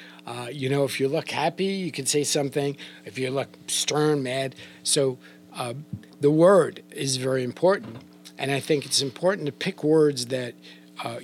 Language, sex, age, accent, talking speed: English, male, 50-69, American, 175 wpm